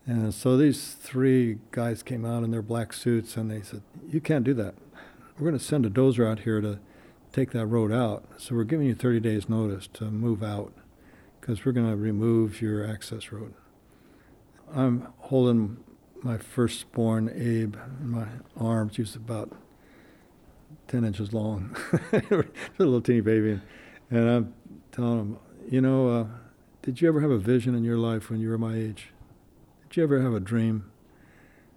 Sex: male